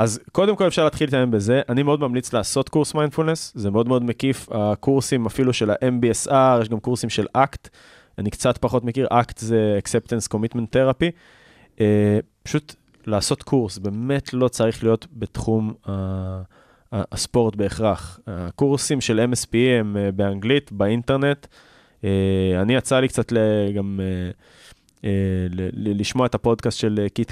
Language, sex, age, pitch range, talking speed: Hebrew, male, 20-39, 105-130 Hz, 140 wpm